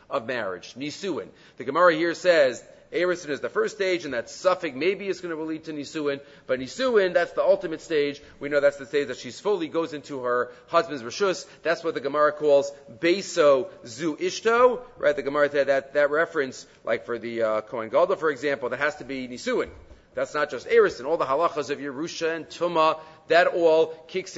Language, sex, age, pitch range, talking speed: English, male, 40-59, 145-185 Hz, 205 wpm